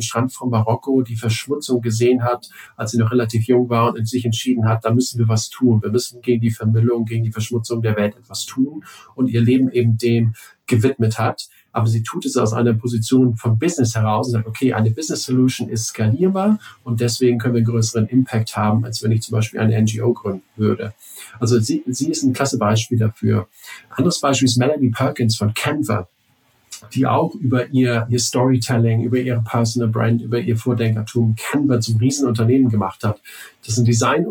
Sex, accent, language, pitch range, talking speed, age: male, German, English, 115-130 Hz, 200 wpm, 40-59